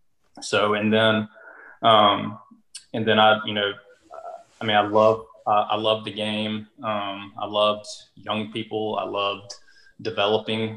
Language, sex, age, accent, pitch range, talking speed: English, male, 20-39, American, 100-110 Hz, 145 wpm